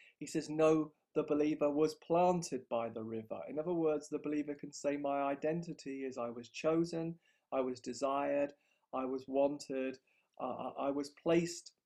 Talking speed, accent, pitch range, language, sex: 165 wpm, British, 135-165 Hz, English, male